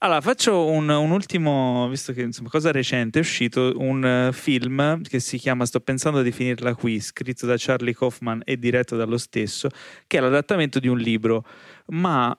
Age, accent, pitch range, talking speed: 30-49, native, 120-145 Hz, 175 wpm